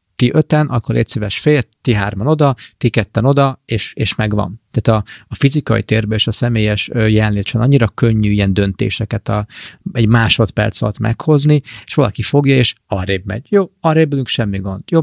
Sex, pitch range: male, 105-120 Hz